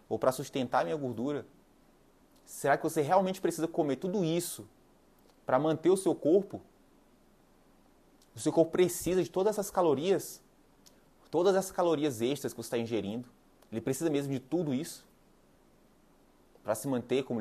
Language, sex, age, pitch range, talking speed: Portuguese, male, 20-39, 130-180 Hz, 155 wpm